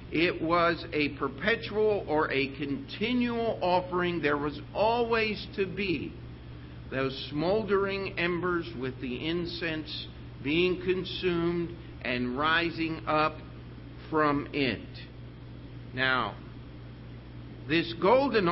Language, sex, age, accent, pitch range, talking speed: English, male, 50-69, American, 130-170 Hz, 95 wpm